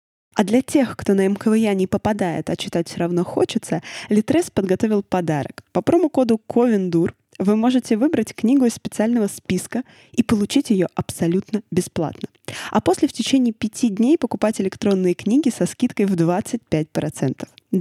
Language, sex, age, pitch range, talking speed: Russian, female, 20-39, 175-245 Hz, 150 wpm